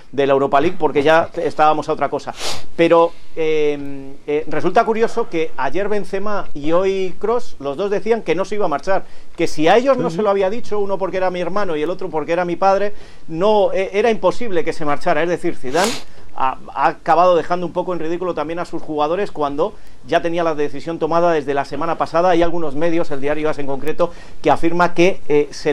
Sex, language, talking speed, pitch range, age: male, Spanish, 225 wpm, 150-190 Hz, 40-59